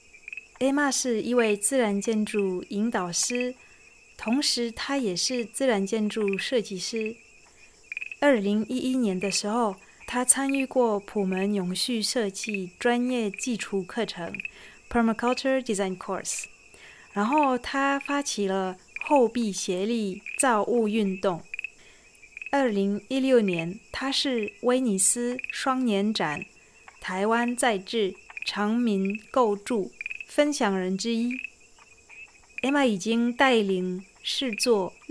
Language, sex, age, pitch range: Chinese, female, 30-49, 200-250 Hz